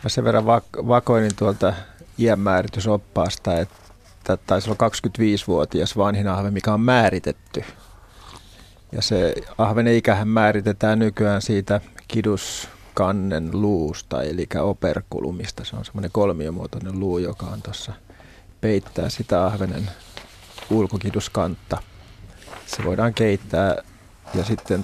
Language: Finnish